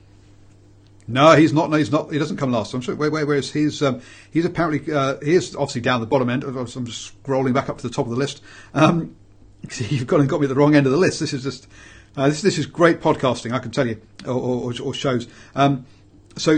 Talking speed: 255 wpm